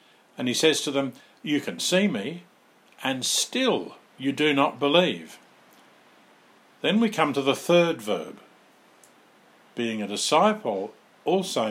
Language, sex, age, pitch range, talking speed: English, male, 50-69, 115-160 Hz, 135 wpm